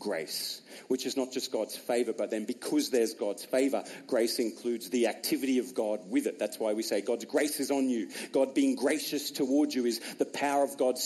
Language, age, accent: English, 40-59, Australian